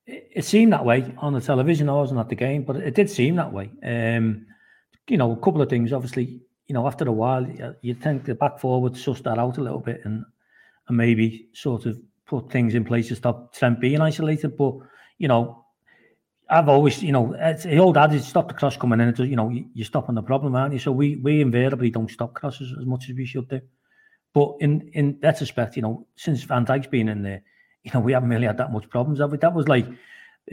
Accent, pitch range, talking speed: British, 125-160 Hz, 245 wpm